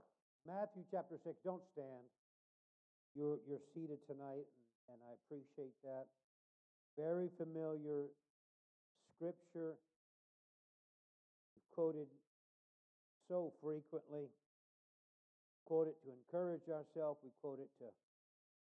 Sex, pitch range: male, 135-165 Hz